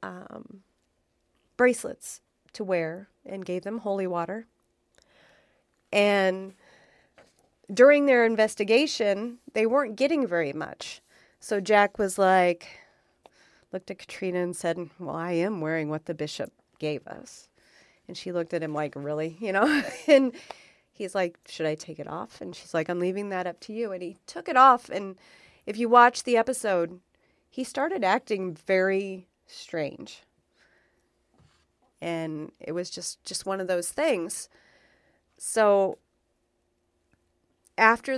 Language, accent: English, American